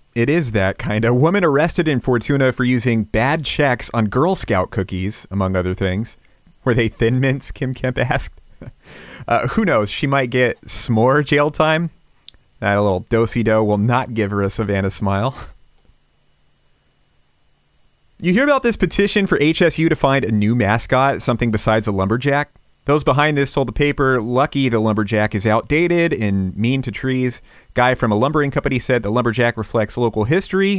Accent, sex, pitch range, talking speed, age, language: American, male, 105-145 Hz, 175 wpm, 30-49, English